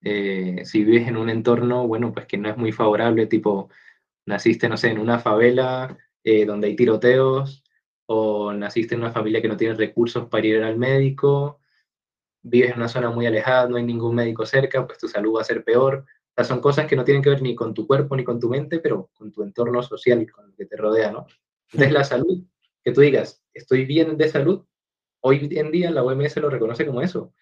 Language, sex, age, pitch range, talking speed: Spanish, male, 20-39, 110-140 Hz, 225 wpm